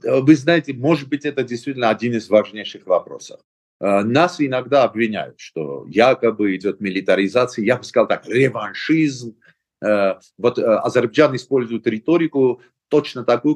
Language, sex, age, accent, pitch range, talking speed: Russian, male, 50-69, native, 110-145 Hz, 125 wpm